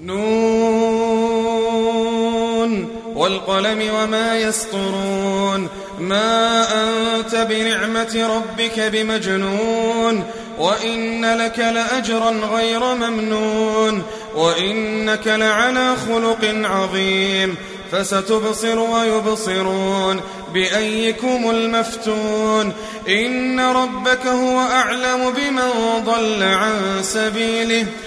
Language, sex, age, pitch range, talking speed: Arabic, male, 30-49, 215-230 Hz, 65 wpm